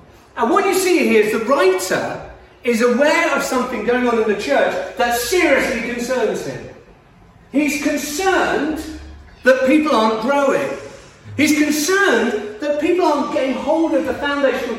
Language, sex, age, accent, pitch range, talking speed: English, male, 40-59, British, 185-295 Hz, 150 wpm